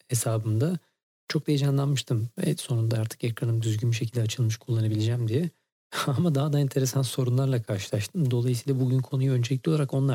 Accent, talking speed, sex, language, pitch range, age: native, 150 wpm, male, Turkish, 115-140 Hz, 40-59